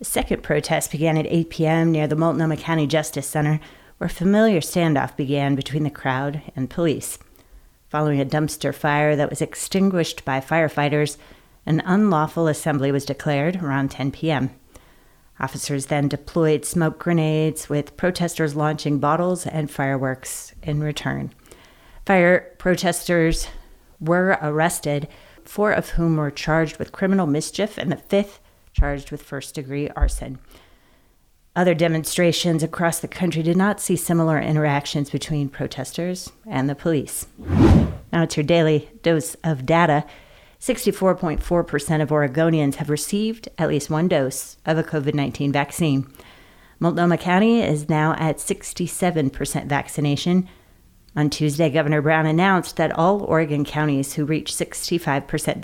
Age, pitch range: 40-59, 145-170 Hz